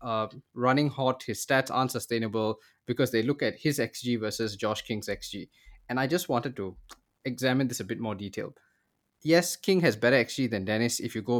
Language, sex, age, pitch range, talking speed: English, male, 20-39, 110-145 Hz, 200 wpm